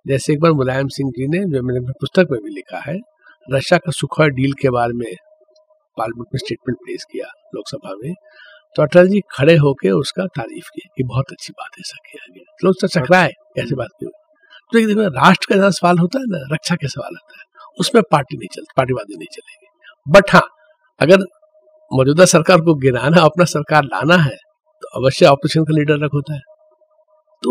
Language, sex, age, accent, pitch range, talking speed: Hindi, male, 50-69, native, 150-215 Hz, 175 wpm